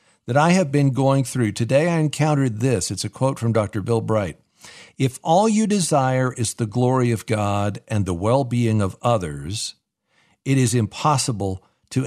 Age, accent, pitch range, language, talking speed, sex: 50-69, American, 105-140 Hz, English, 180 wpm, male